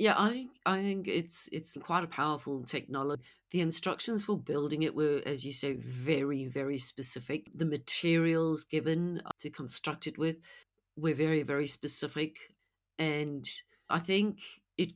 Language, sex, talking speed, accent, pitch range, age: English, female, 150 wpm, British, 140-170 Hz, 50-69